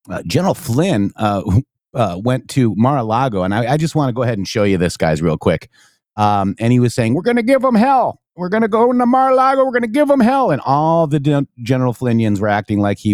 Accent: American